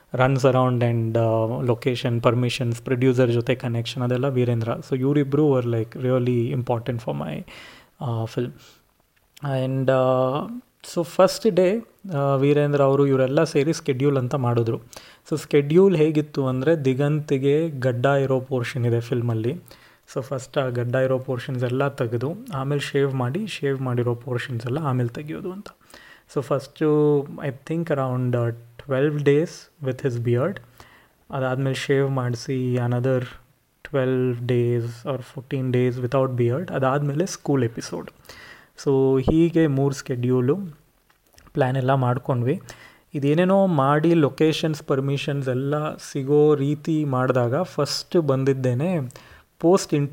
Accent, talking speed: native, 130 wpm